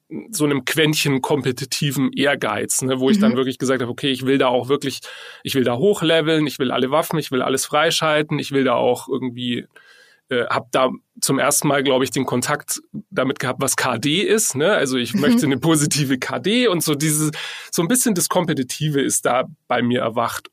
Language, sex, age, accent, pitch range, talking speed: German, male, 30-49, German, 130-160 Hz, 200 wpm